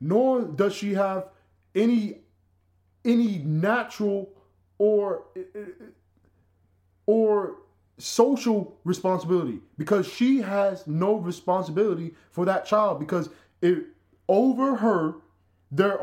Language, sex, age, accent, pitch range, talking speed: English, male, 20-39, American, 140-195 Hz, 90 wpm